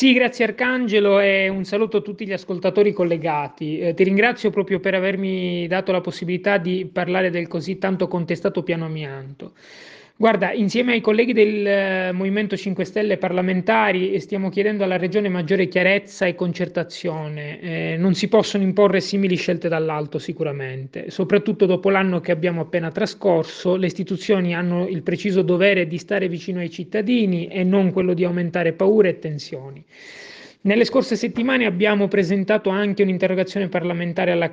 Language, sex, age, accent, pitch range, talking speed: Italian, male, 30-49, native, 170-200 Hz, 155 wpm